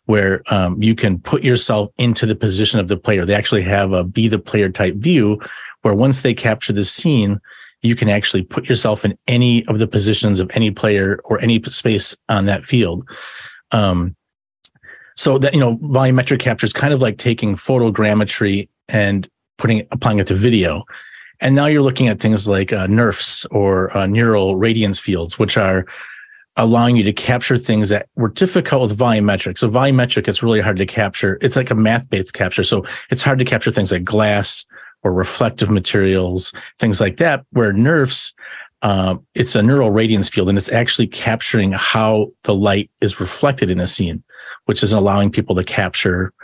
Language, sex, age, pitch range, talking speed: English, male, 30-49, 100-120 Hz, 185 wpm